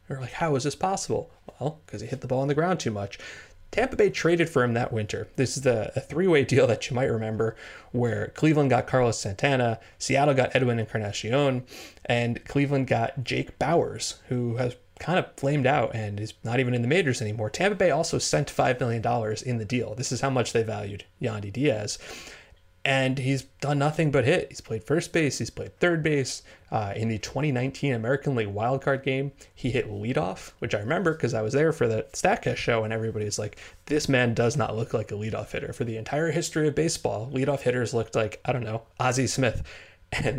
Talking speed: 215 wpm